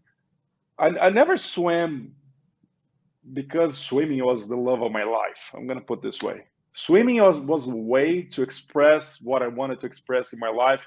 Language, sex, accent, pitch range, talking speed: English, male, Brazilian, 125-165 Hz, 180 wpm